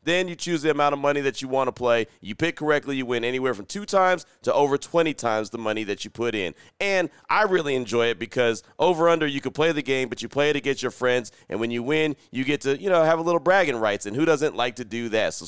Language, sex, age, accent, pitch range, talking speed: English, male, 30-49, American, 120-155 Hz, 280 wpm